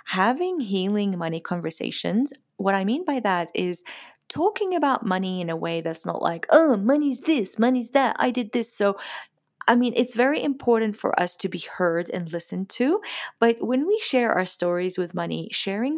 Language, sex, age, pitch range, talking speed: English, female, 30-49, 180-255 Hz, 190 wpm